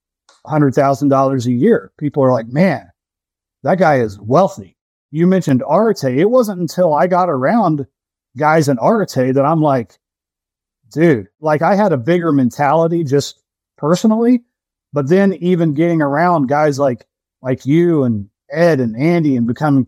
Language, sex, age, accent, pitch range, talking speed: English, male, 30-49, American, 130-165 Hz, 150 wpm